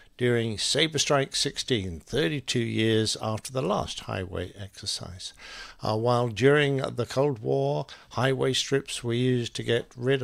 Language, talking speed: English, 140 wpm